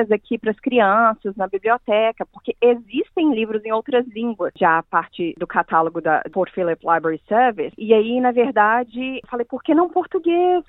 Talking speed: 175 wpm